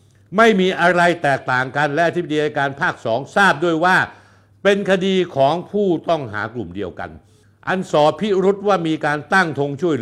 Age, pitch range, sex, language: 60-79, 115-170 Hz, male, Thai